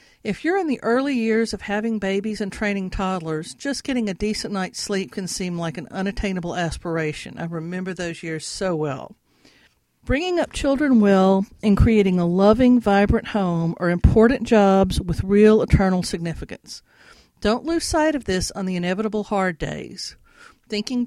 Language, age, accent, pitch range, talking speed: English, 50-69, American, 180-240 Hz, 165 wpm